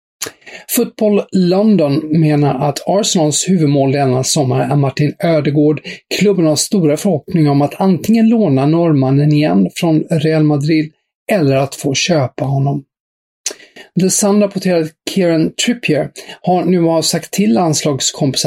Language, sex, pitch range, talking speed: English, male, 140-180 Hz, 125 wpm